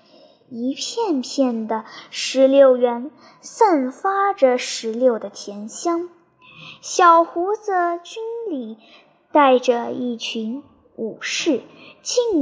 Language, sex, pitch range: Chinese, male, 245-385 Hz